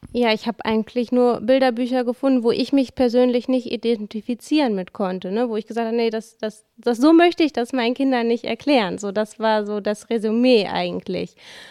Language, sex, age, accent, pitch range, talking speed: German, female, 20-39, German, 215-245 Hz, 180 wpm